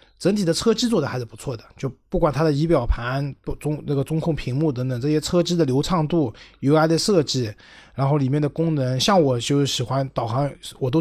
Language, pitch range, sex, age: Chinese, 125-155 Hz, male, 20-39